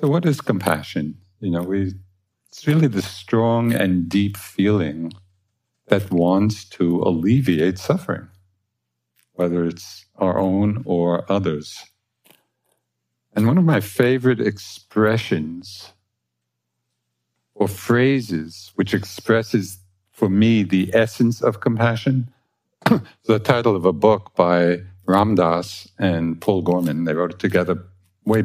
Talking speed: 120 wpm